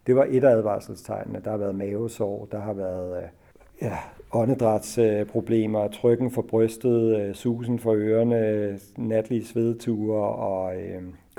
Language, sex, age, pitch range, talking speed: Danish, male, 50-69, 100-115 Hz, 120 wpm